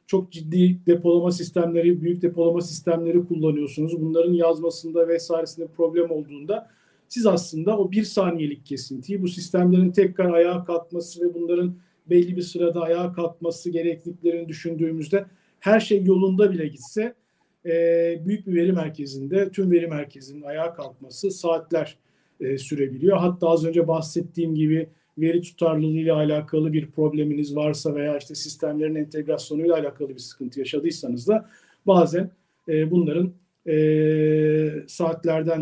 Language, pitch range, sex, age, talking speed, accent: Turkish, 160-185 Hz, male, 50-69, 120 wpm, native